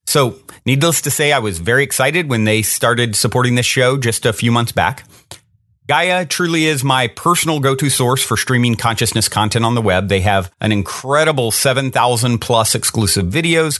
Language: English